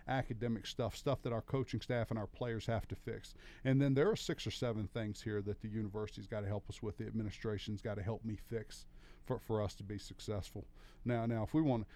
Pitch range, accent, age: 105-120 Hz, American, 50-69